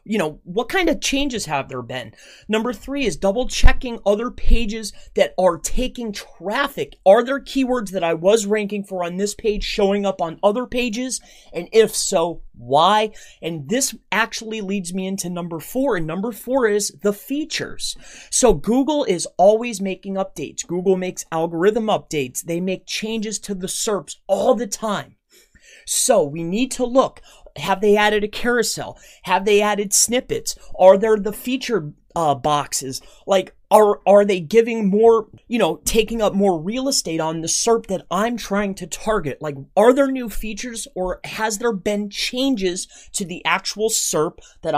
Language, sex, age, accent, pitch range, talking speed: English, male, 30-49, American, 180-235 Hz, 175 wpm